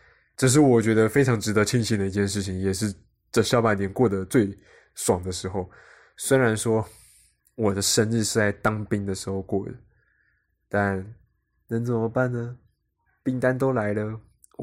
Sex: male